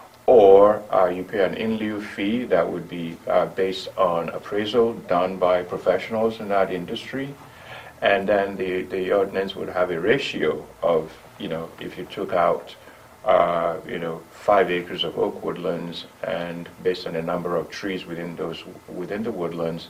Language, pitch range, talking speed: English, 90-110 Hz, 170 wpm